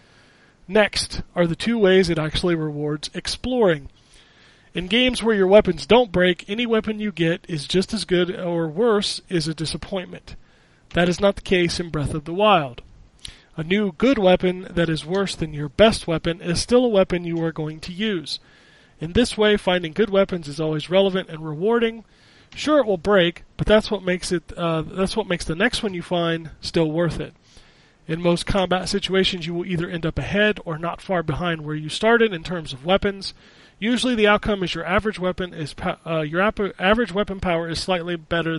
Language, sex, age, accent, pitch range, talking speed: English, male, 40-59, American, 165-205 Hz, 200 wpm